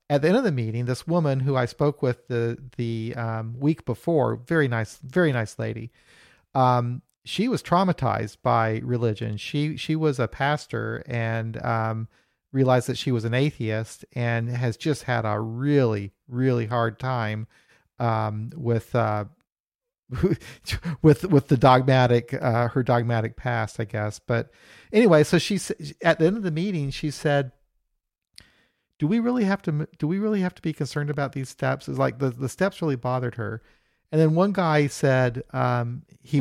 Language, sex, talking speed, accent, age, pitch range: English, male, 175 wpm, American, 50-69, 120-150 Hz